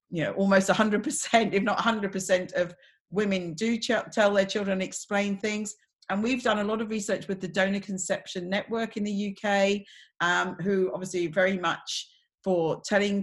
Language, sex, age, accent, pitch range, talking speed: English, female, 40-59, British, 180-210 Hz, 170 wpm